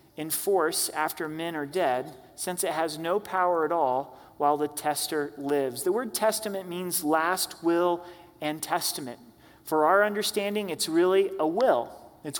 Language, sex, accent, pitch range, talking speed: English, male, American, 155-205 Hz, 155 wpm